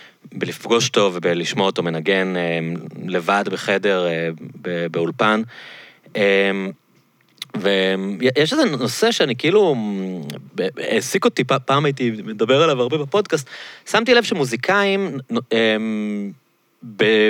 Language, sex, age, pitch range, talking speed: Hebrew, male, 30-49, 100-140 Hz, 90 wpm